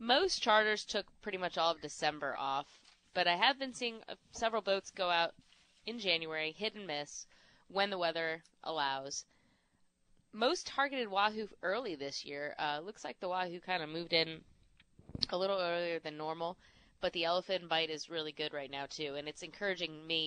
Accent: American